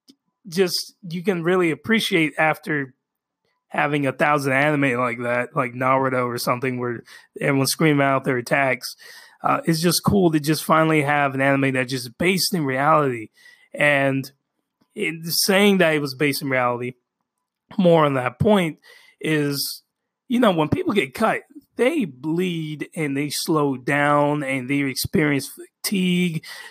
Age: 20-39